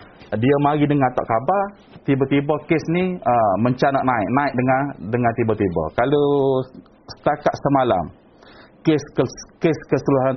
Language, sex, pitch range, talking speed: Malay, male, 110-140 Hz, 125 wpm